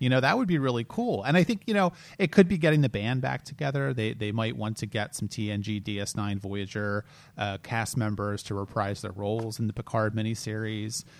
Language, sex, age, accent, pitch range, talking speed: English, male, 30-49, American, 100-125 Hz, 220 wpm